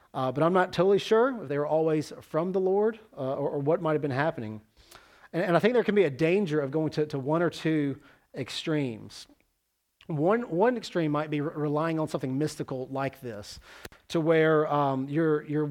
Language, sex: English, male